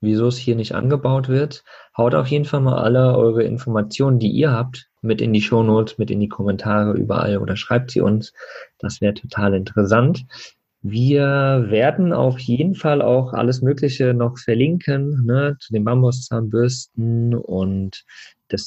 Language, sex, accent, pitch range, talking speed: German, male, German, 100-125 Hz, 160 wpm